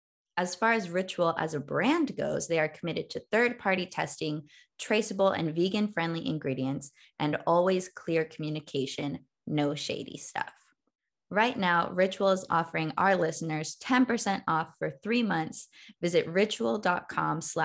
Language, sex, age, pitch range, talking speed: English, female, 20-39, 160-205 Hz, 135 wpm